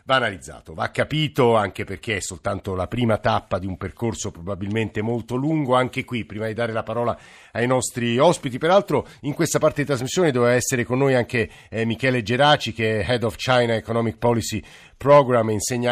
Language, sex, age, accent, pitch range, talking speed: Italian, male, 50-69, native, 110-140 Hz, 190 wpm